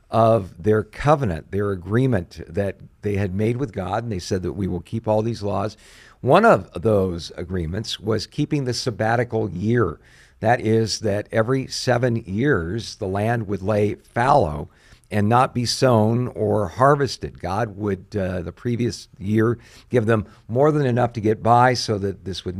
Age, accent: 50-69, American